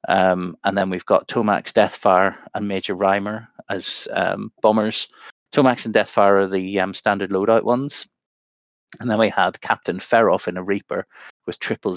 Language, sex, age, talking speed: English, male, 30-49, 165 wpm